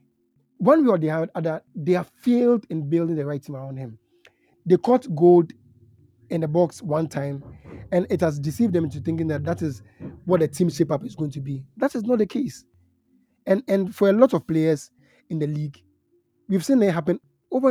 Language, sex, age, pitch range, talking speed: English, male, 30-49, 145-185 Hz, 210 wpm